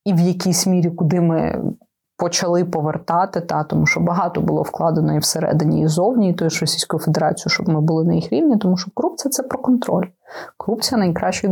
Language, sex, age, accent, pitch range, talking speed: Ukrainian, female, 20-39, native, 170-210 Hz, 200 wpm